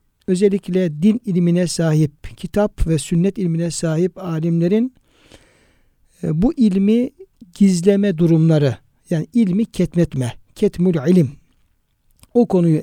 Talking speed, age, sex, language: 100 wpm, 60-79, male, Turkish